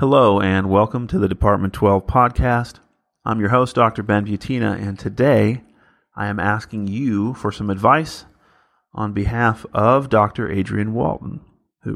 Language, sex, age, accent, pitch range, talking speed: English, male, 30-49, American, 100-120 Hz, 150 wpm